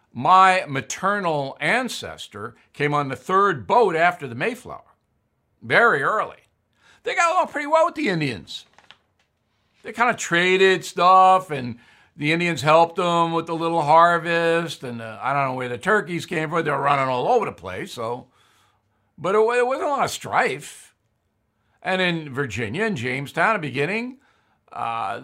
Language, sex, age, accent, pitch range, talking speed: English, male, 60-79, American, 135-200 Hz, 165 wpm